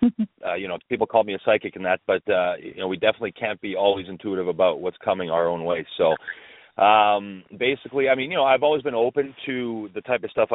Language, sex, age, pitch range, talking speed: English, male, 30-49, 85-110 Hz, 240 wpm